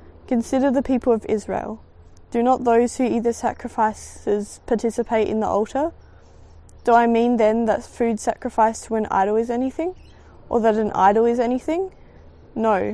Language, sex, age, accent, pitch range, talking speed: English, female, 20-39, Australian, 210-240 Hz, 160 wpm